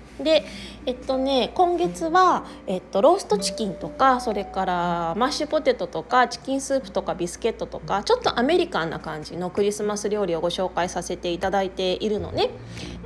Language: Japanese